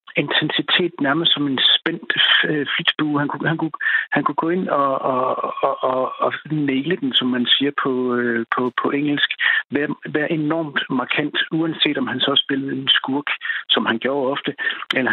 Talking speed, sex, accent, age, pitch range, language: 170 wpm, male, native, 60-79, 130-155 Hz, Danish